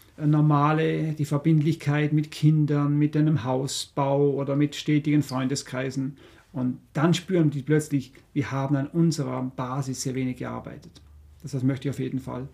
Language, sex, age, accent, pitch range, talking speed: German, male, 50-69, German, 130-155 Hz, 155 wpm